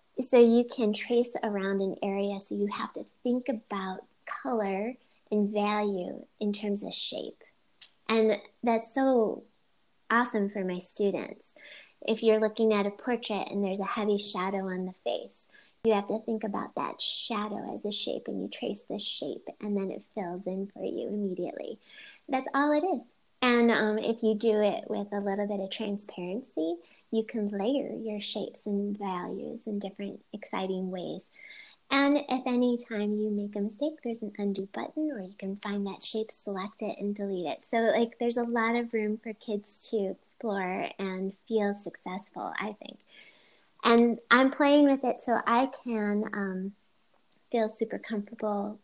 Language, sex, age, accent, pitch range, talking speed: English, female, 30-49, American, 200-235 Hz, 175 wpm